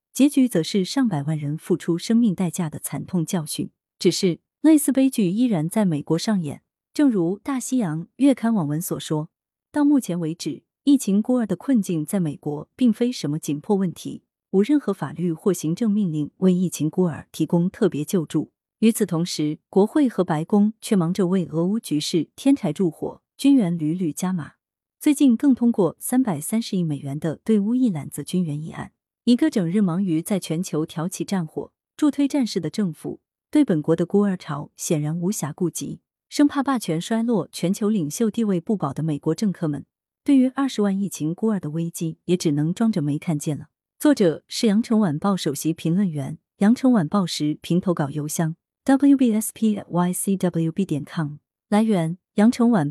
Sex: female